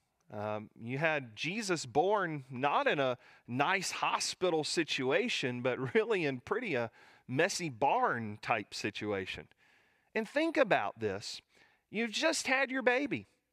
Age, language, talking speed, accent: 40-59, English, 130 wpm, American